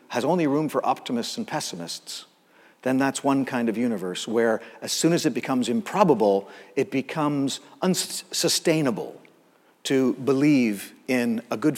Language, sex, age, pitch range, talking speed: English, male, 50-69, 120-155 Hz, 145 wpm